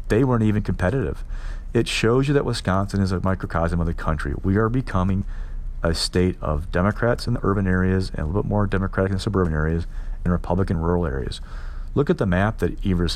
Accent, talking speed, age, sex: American, 210 wpm, 40-59, male